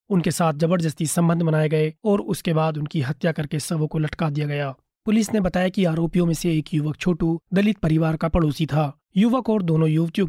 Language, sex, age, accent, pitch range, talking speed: Hindi, male, 30-49, native, 155-185 Hz, 210 wpm